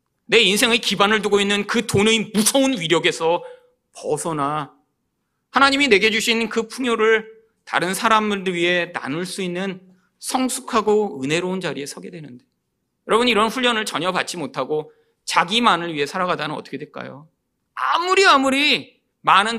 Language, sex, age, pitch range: Korean, male, 40-59, 170-245 Hz